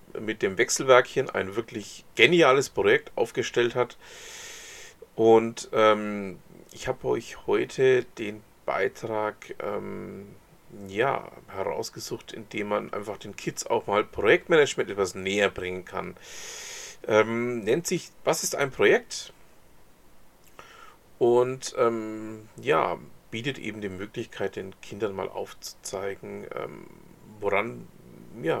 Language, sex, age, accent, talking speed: German, male, 40-59, German, 110 wpm